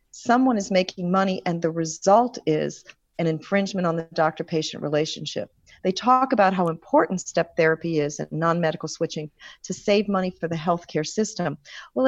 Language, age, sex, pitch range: English, 40-59, female, 165-220 Hz